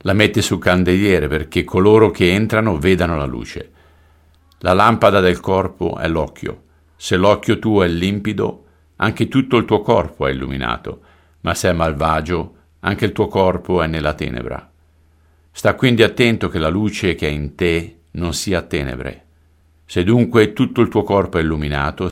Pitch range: 80-95 Hz